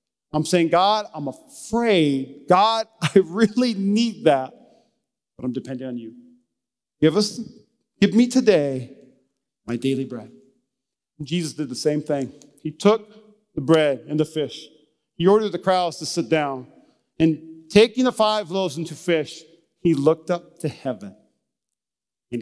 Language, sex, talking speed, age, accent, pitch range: English, male, 155 wpm, 40-59, American, 150-220 Hz